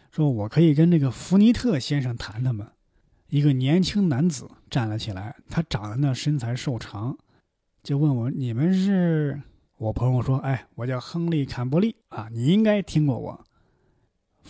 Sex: male